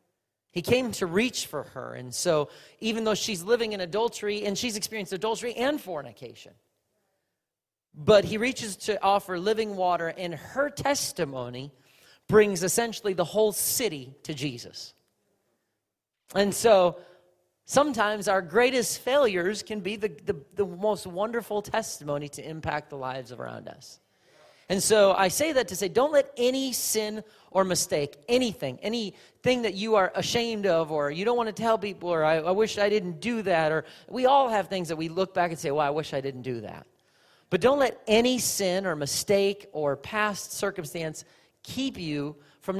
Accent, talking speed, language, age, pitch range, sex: American, 170 wpm, English, 40-59, 160-220 Hz, male